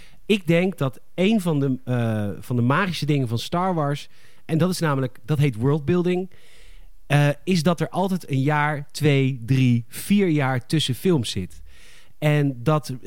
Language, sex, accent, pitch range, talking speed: Dutch, male, Dutch, 125-170 Hz, 170 wpm